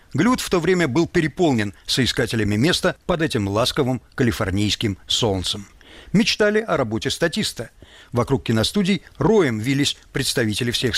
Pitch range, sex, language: 110-170 Hz, male, Russian